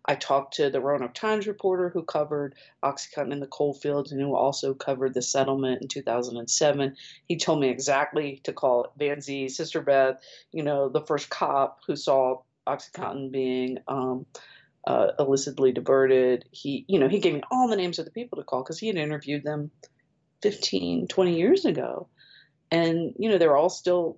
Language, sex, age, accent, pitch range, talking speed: English, female, 40-59, American, 130-160 Hz, 185 wpm